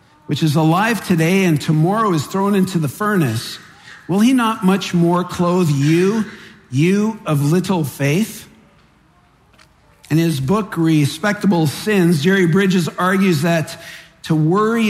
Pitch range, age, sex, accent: 150-190 Hz, 50-69, male, American